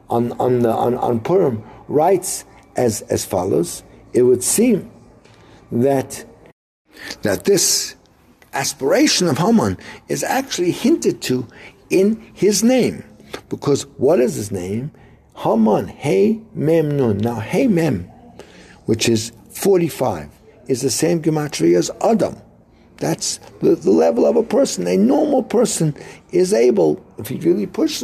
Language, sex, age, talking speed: English, male, 60-79, 135 wpm